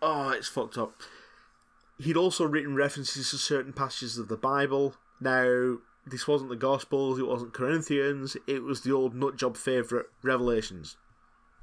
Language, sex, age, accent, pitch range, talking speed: English, male, 20-39, British, 125-150 Hz, 150 wpm